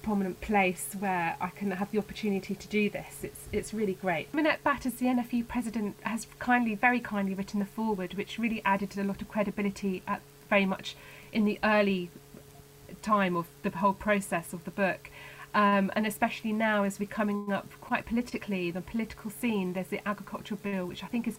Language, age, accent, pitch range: English, 30-49, British, 195-220 Hz